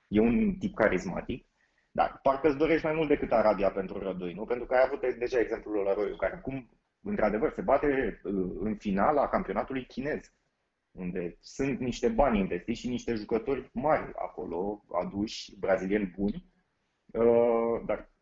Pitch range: 100-155 Hz